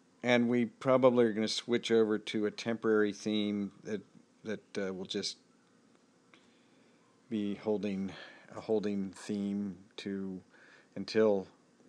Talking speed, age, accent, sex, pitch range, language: 120 wpm, 50-69, American, male, 100-110 Hz, English